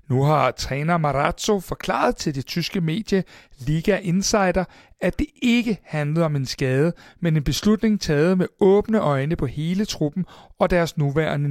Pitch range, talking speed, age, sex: 140-190 Hz, 160 wpm, 60-79, male